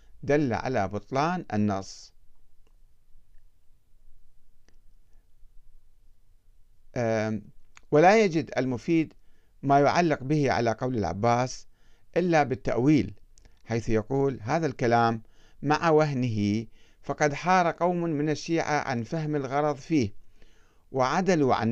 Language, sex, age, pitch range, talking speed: Arabic, male, 50-69, 105-145 Hz, 90 wpm